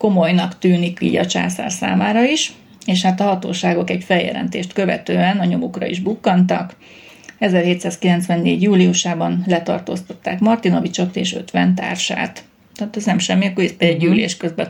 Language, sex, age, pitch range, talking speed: Hungarian, female, 30-49, 175-205 Hz, 125 wpm